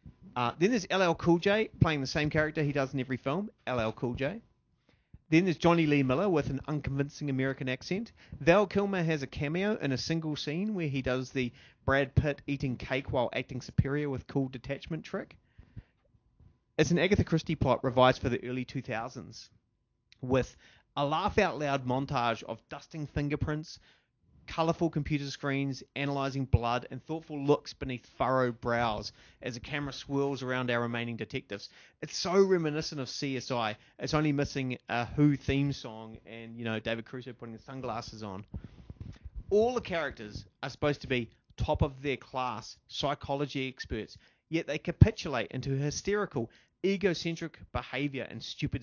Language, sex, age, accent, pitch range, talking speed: English, male, 30-49, Australian, 120-150 Hz, 160 wpm